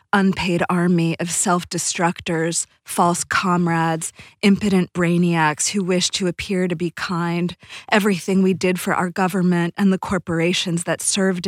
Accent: American